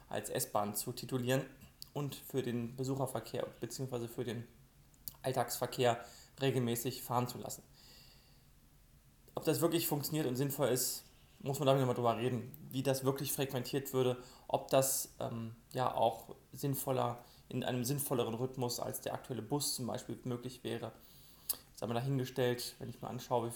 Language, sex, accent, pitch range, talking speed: German, male, German, 120-135 Hz, 150 wpm